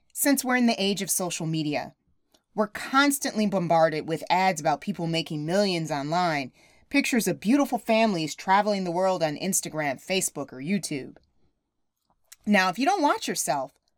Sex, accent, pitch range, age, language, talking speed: female, American, 165-255 Hz, 30-49, English, 155 wpm